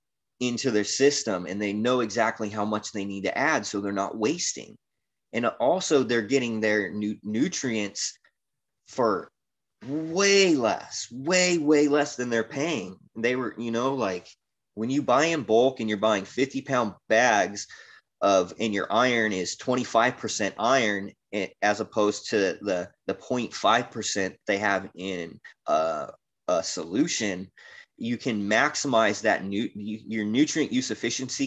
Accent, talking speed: American, 145 wpm